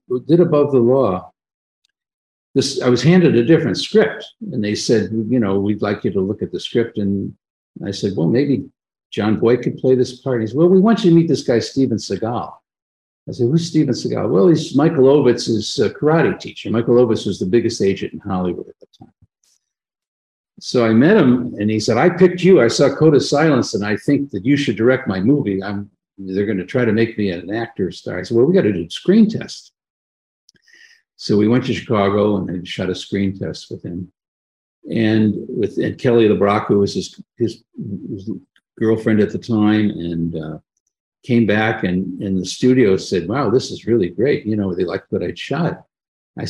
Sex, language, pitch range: male, English, 100-140 Hz